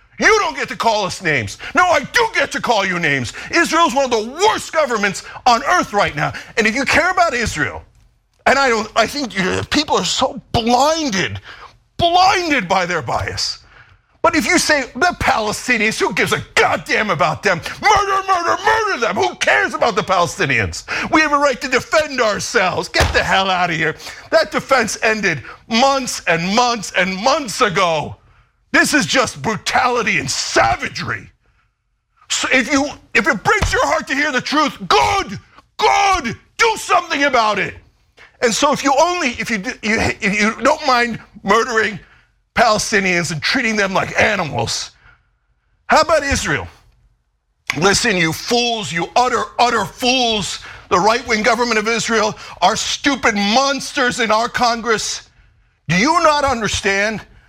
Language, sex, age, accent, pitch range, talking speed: English, male, 50-69, American, 200-295 Hz, 165 wpm